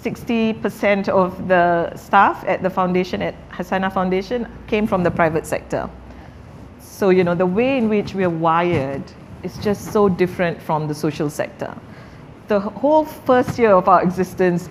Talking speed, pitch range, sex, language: 165 wpm, 170-200 Hz, female, English